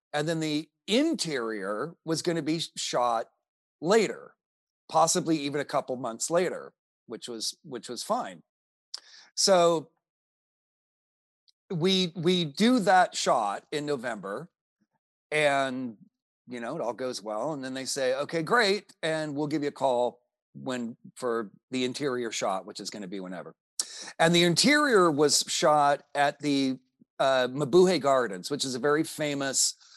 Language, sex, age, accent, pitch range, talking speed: English, male, 40-59, American, 130-175 Hz, 150 wpm